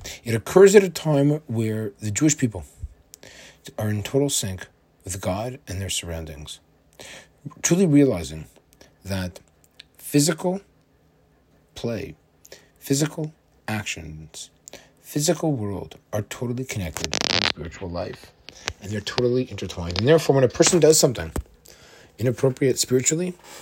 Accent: American